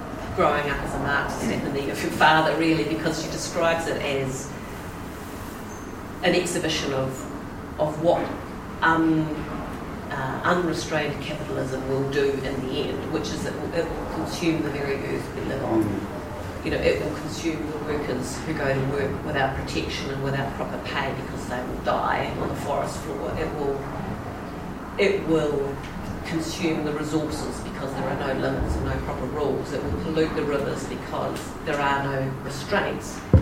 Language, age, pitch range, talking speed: English, 40-59, 135-160 Hz, 165 wpm